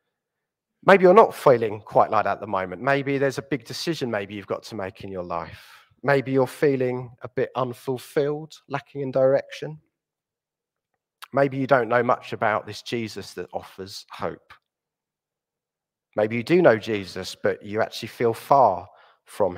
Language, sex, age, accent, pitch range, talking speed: English, male, 30-49, British, 105-135 Hz, 165 wpm